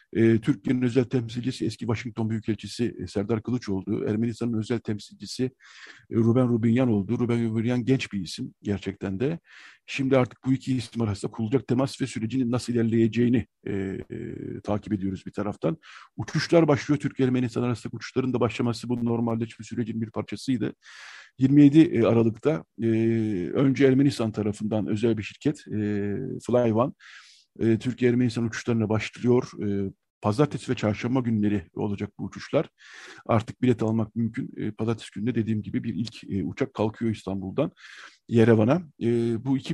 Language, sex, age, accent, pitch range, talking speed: Turkish, male, 50-69, native, 110-130 Hz, 140 wpm